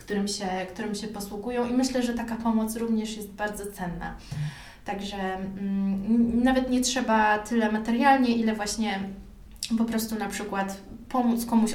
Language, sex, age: Polish, female, 20-39